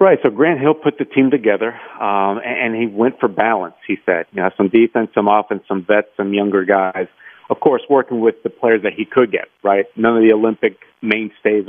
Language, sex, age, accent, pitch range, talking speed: English, male, 50-69, American, 105-120 Hz, 220 wpm